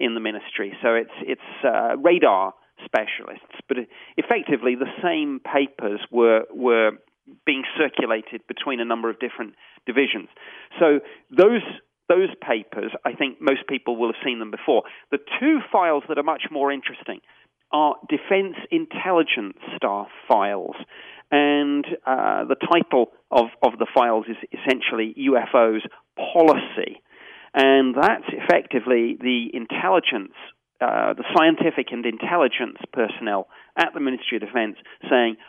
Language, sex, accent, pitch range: English, male, British, 115-145 Hz